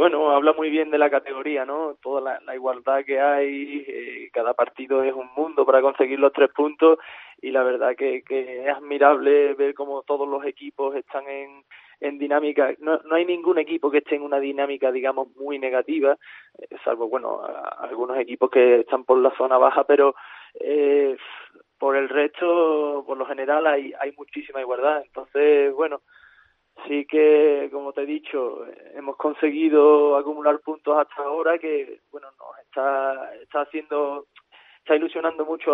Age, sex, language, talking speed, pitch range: 20-39, male, Spanish, 170 wpm, 135-155 Hz